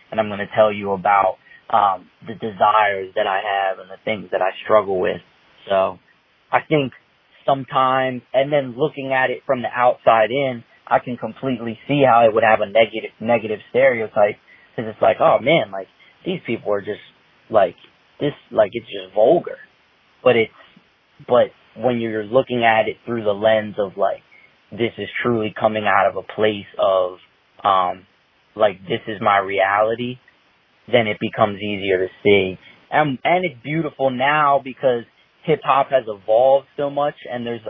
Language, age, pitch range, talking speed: English, 20-39, 110-150 Hz, 170 wpm